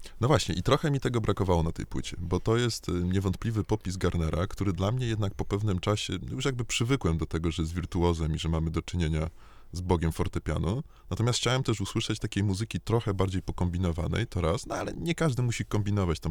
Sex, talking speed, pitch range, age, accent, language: male, 210 wpm, 85-115 Hz, 20-39, native, Polish